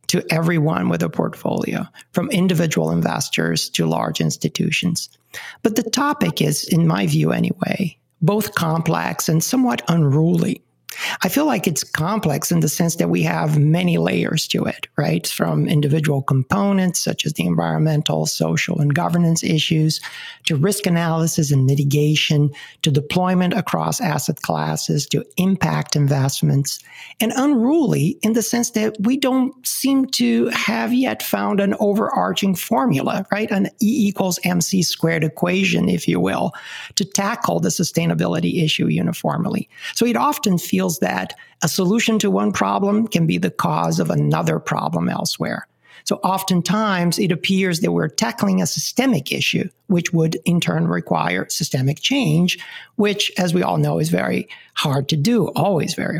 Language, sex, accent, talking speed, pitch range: English, male, American, 155 wpm, 155-205 Hz